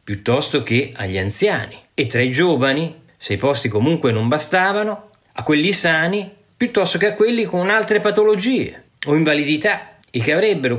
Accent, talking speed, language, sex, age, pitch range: native, 160 wpm, Italian, male, 40-59, 105-150 Hz